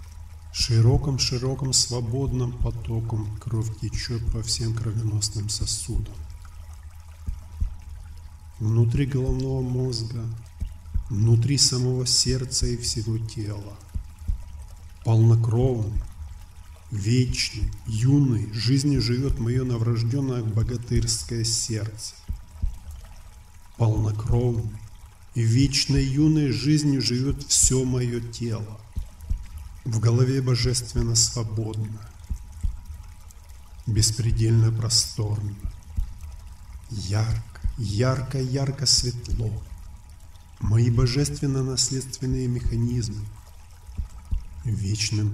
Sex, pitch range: male, 85-120 Hz